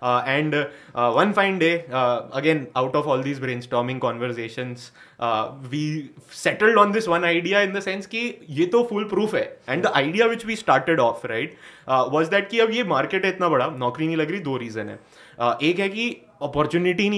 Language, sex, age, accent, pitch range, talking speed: English, male, 20-39, Indian, 125-170 Hz, 180 wpm